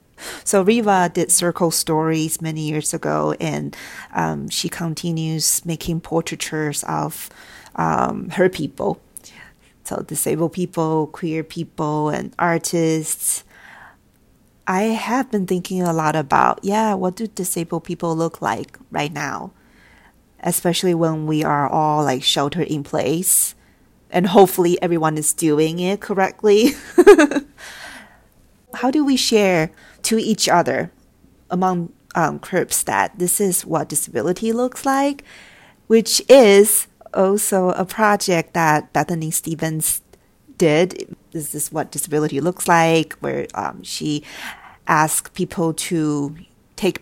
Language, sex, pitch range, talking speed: English, female, 155-195 Hz, 125 wpm